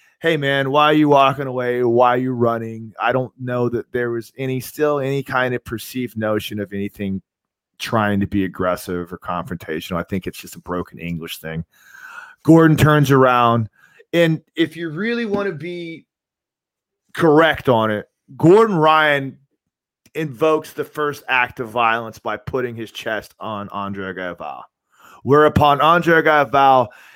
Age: 30-49